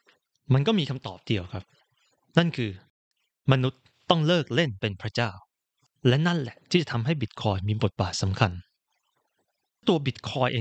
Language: Thai